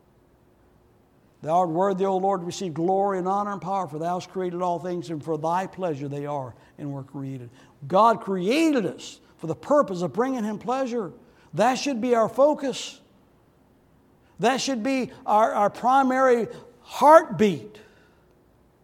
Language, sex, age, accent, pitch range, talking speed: English, male, 60-79, American, 175-255 Hz, 155 wpm